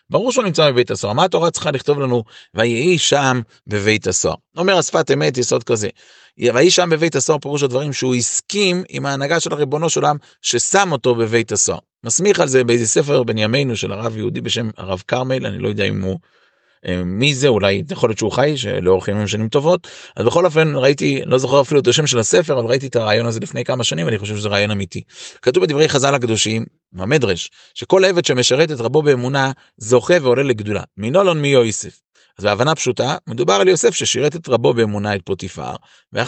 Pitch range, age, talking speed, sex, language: 115-160 Hz, 30-49, 200 wpm, male, Hebrew